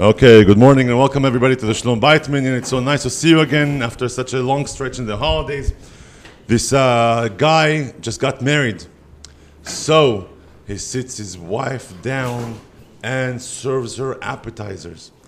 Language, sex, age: English, male, 50-69